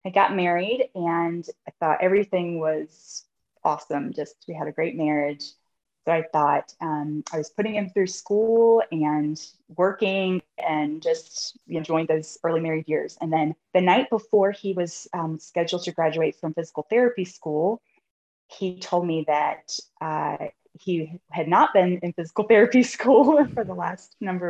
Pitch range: 160-190 Hz